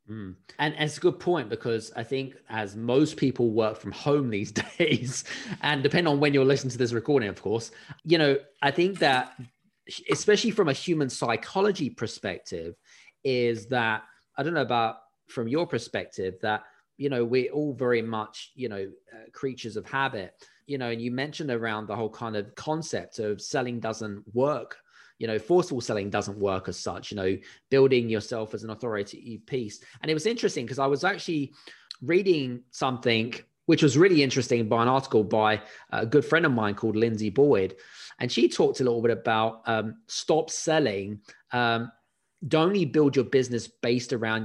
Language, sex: English, male